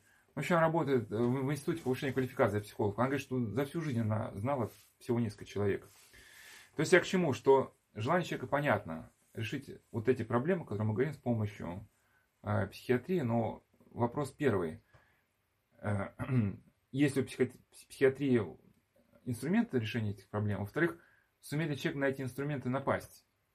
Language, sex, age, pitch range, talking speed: Russian, male, 20-39, 105-135 Hz, 155 wpm